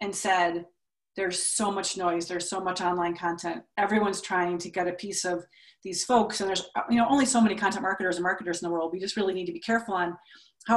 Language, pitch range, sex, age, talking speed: English, 175-215 Hz, female, 30-49, 240 wpm